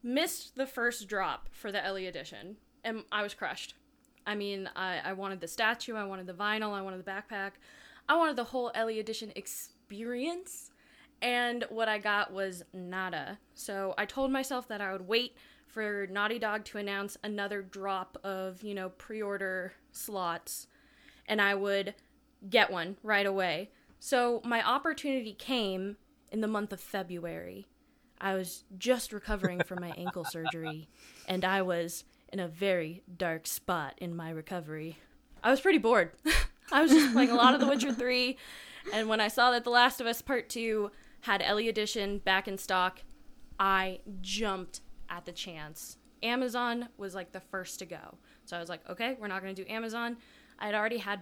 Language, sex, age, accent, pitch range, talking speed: English, female, 10-29, American, 190-245 Hz, 180 wpm